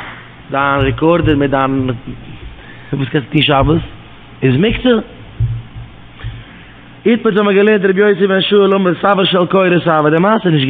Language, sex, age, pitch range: English, male, 20-39, 145-175 Hz